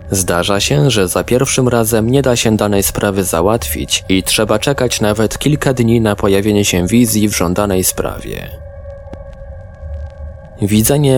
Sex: male